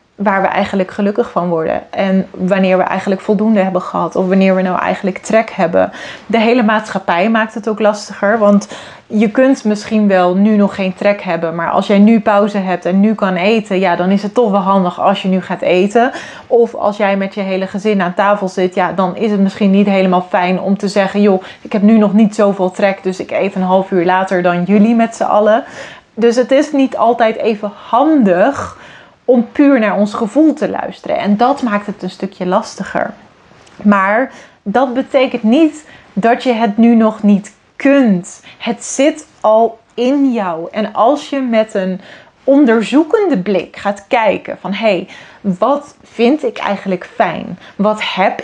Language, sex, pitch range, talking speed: Dutch, female, 190-230 Hz, 195 wpm